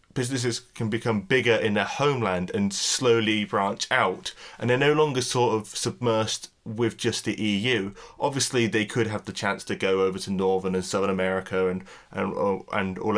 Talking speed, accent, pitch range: 180 wpm, British, 100-125 Hz